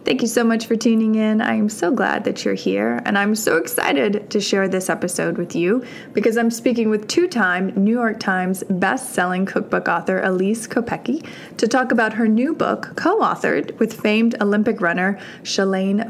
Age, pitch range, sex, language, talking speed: 20-39, 185-230 Hz, female, English, 195 wpm